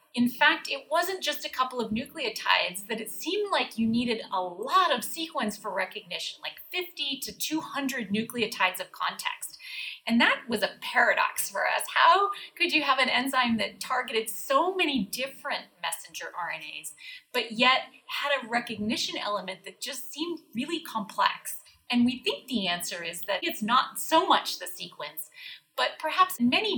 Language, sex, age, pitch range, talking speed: English, female, 30-49, 200-290 Hz, 170 wpm